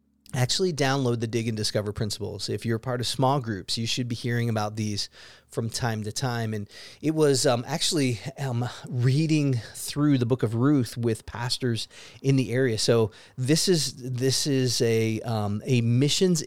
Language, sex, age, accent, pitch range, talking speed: English, male, 30-49, American, 115-135 Hz, 180 wpm